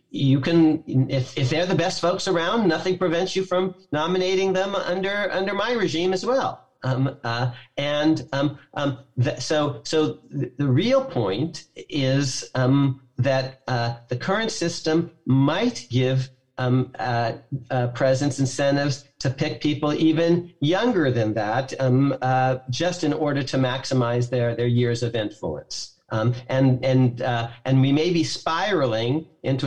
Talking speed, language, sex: 150 wpm, English, male